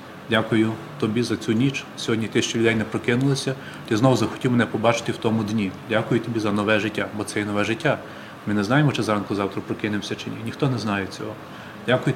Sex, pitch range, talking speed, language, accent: male, 105-130 Hz, 205 wpm, Ukrainian, native